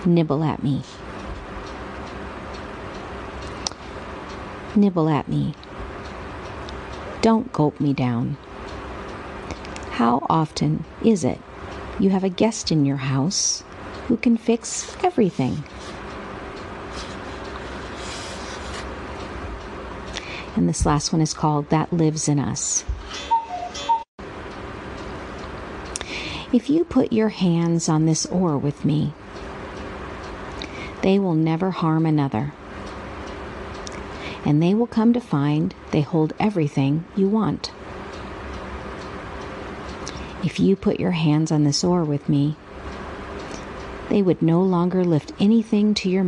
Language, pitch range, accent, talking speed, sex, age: English, 145-195 Hz, American, 100 wpm, female, 50-69